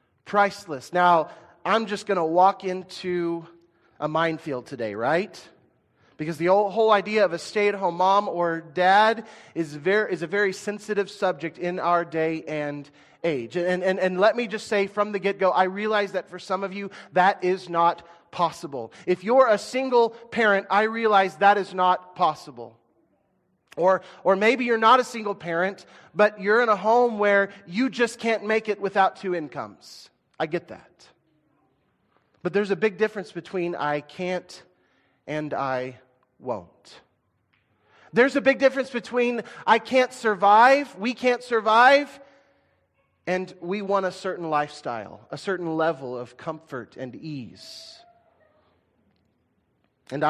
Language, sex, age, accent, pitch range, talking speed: English, male, 30-49, American, 165-210 Hz, 150 wpm